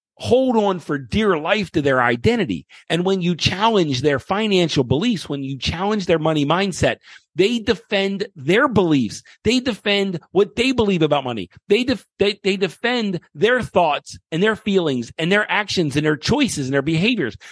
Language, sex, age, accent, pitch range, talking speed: English, male, 40-59, American, 165-215 Hz, 170 wpm